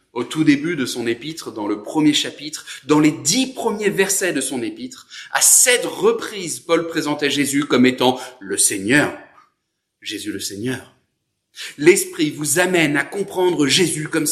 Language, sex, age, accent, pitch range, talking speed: French, male, 30-49, French, 115-165 Hz, 160 wpm